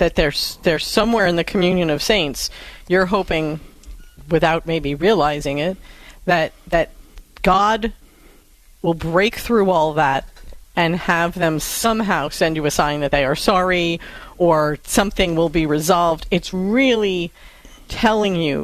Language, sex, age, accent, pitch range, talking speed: English, female, 40-59, American, 155-185 Hz, 140 wpm